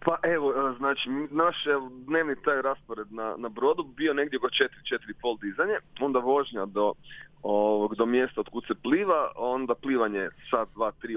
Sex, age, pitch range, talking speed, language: male, 30-49, 115-150 Hz, 160 wpm, Croatian